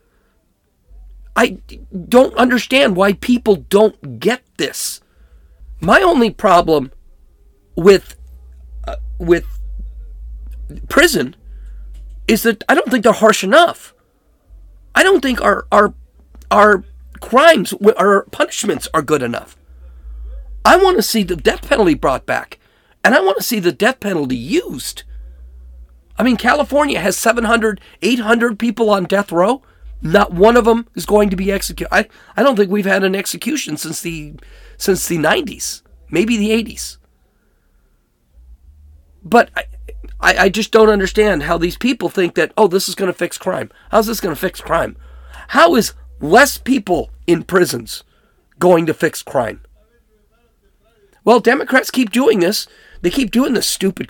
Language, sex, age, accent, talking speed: English, male, 40-59, American, 150 wpm